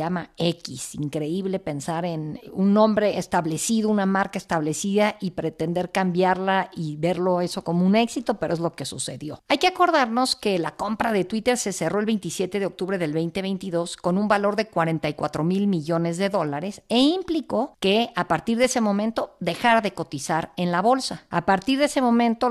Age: 50-69